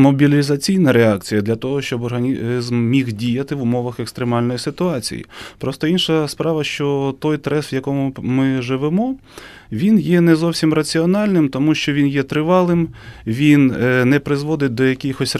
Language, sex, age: Ukrainian, male, 20-39